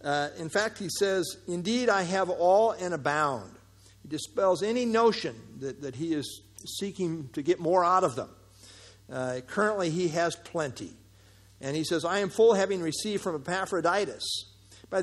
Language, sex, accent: English, male, American